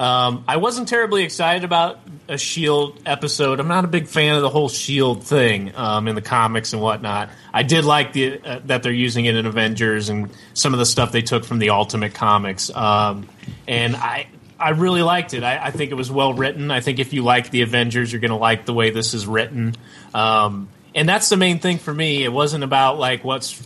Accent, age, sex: American, 30-49, male